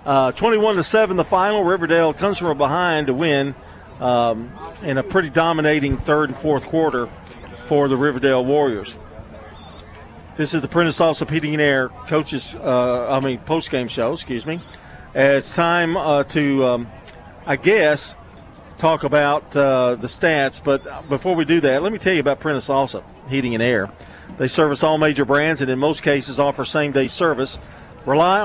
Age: 50-69